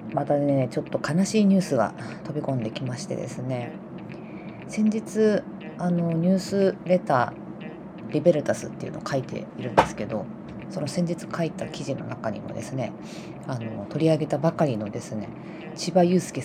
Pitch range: 135-175 Hz